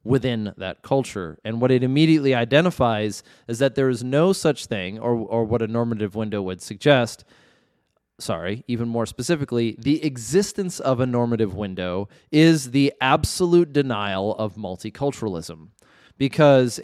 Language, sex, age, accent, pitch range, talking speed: English, male, 20-39, American, 110-135 Hz, 145 wpm